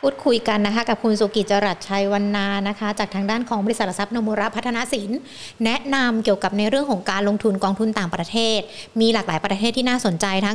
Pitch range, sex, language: 200-235 Hz, female, Thai